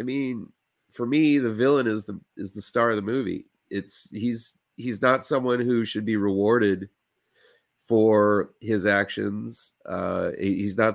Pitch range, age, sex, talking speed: 95-110 Hz, 30-49, male, 160 wpm